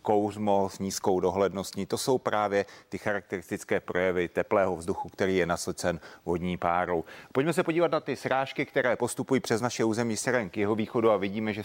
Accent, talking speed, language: native, 180 wpm, Czech